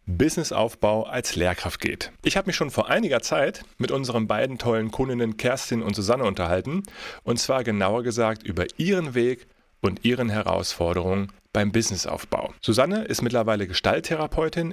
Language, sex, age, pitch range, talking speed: German, male, 40-59, 95-120 Hz, 145 wpm